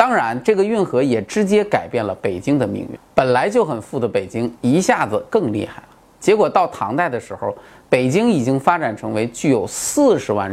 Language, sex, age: Chinese, male, 30-49